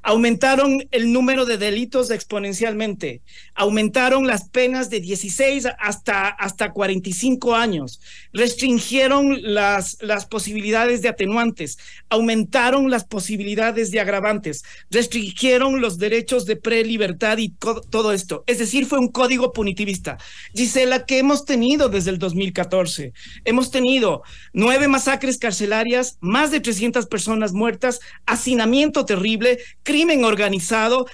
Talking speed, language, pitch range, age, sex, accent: 120 wpm, Spanish, 210-265 Hz, 40-59, male, Mexican